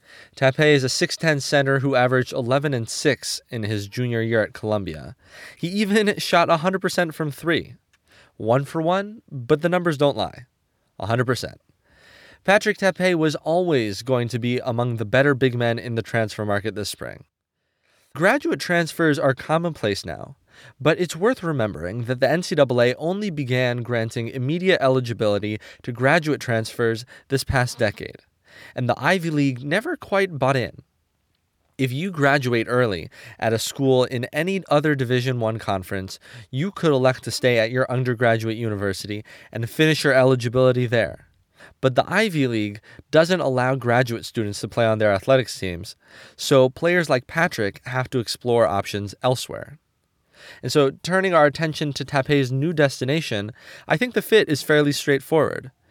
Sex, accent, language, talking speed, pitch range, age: male, American, English, 155 wpm, 115-155 Hz, 20-39